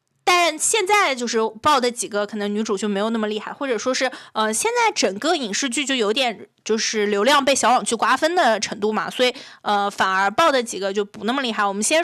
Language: Chinese